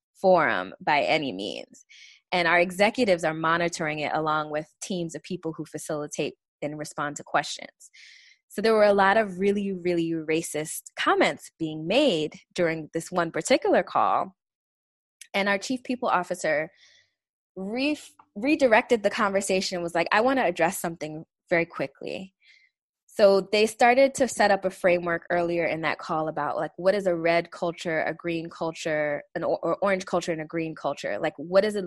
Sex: female